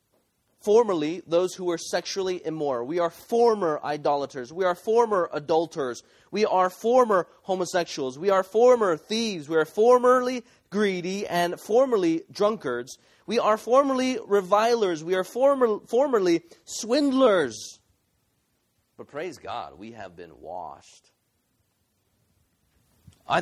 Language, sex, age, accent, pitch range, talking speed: English, male, 30-49, American, 110-180 Hz, 120 wpm